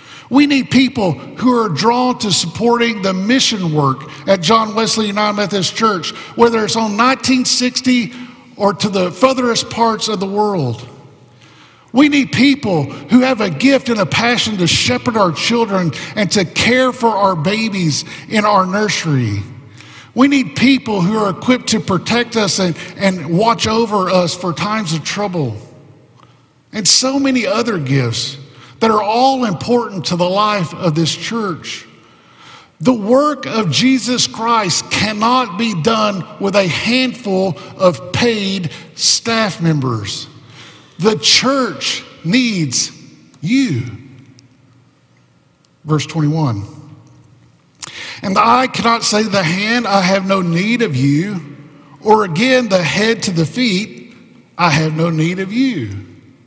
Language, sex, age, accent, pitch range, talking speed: English, male, 50-69, American, 160-230 Hz, 140 wpm